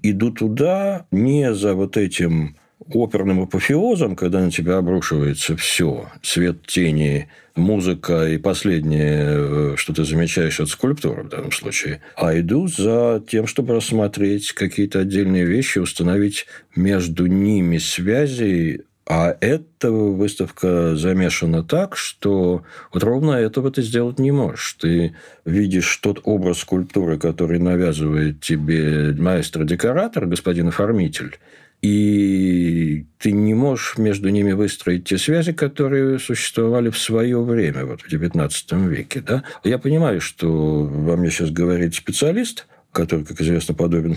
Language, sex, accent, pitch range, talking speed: Russian, male, native, 80-110 Hz, 130 wpm